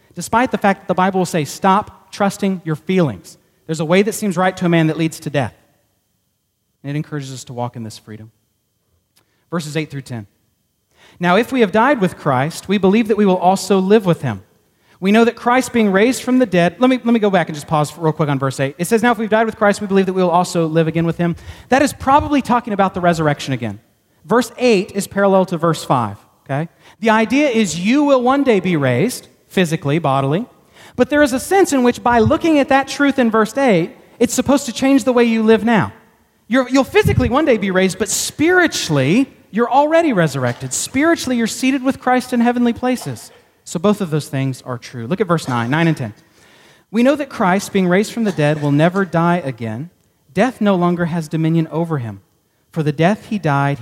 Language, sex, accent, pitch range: English, male, American, 140-230 Hz